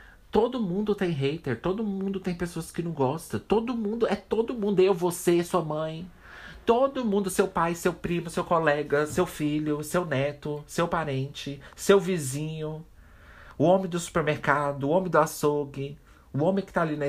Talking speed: 175 wpm